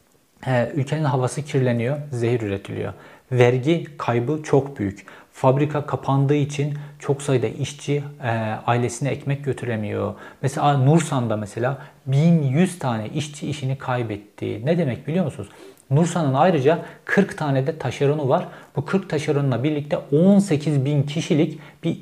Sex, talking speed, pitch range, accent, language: male, 125 wpm, 125-155 Hz, native, Turkish